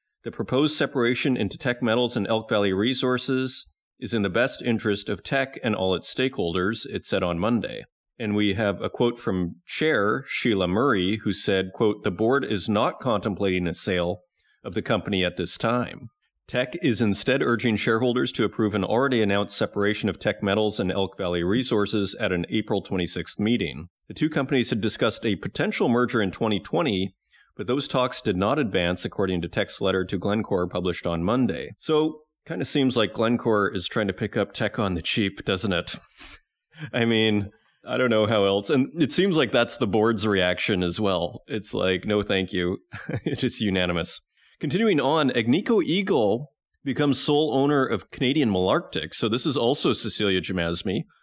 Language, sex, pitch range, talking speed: English, male, 95-125 Hz, 185 wpm